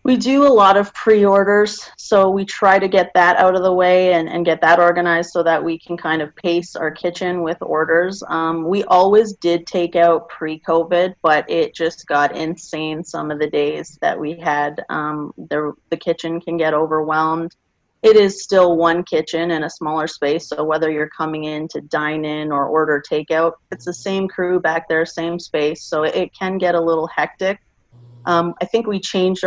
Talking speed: 200 wpm